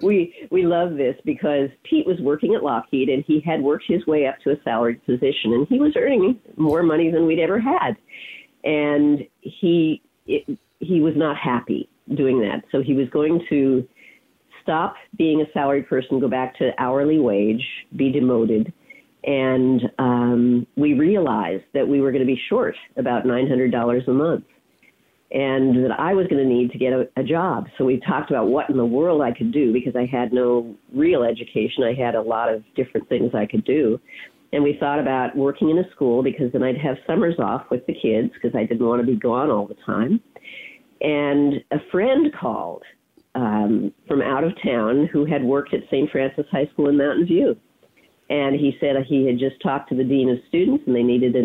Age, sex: 50-69, female